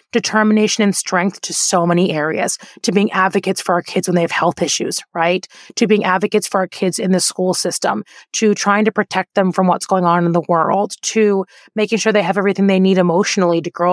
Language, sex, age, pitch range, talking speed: English, female, 20-39, 180-220 Hz, 225 wpm